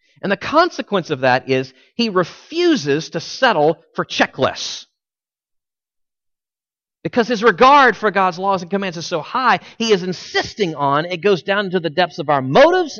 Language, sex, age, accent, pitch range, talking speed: English, male, 40-59, American, 135-210 Hz, 165 wpm